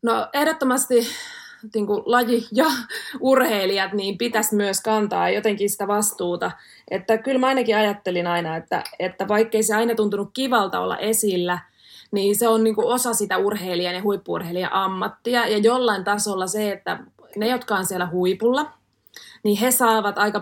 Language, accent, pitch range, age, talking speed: Finnish, native, 185-230 Hz, 20-39, 155 wpm